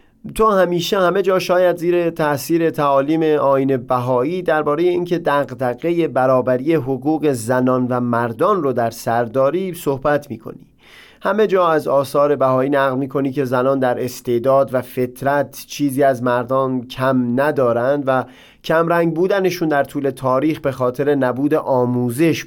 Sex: male